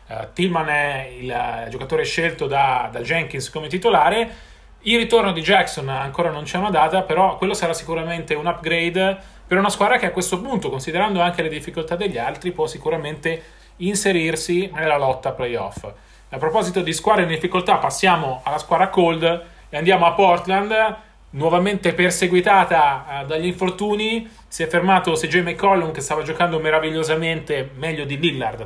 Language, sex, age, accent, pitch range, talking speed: Italian, male, 30-49, native, 155-185 Hz, 160 wpm